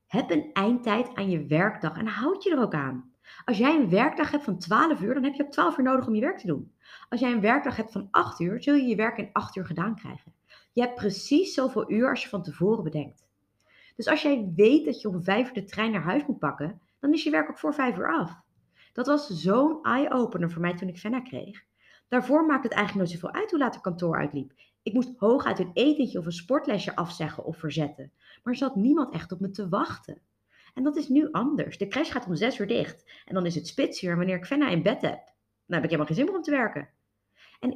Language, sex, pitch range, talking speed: Dutch, female, 175-270 Hz, 255 wpm